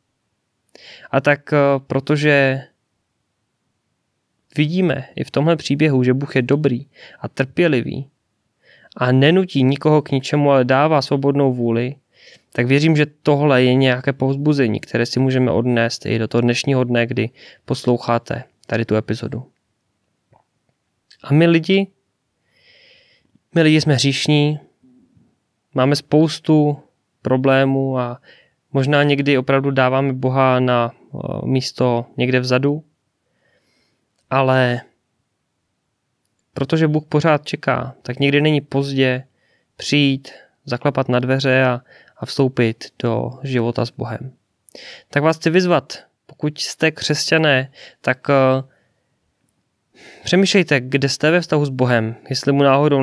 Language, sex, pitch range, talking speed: Czech, male, 125-145 Hz, 115 wpm